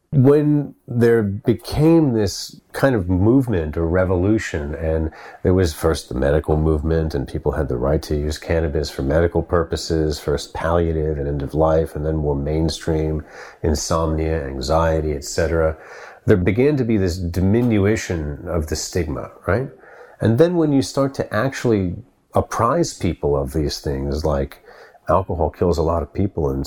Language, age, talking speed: English, 40-59, 160 wpm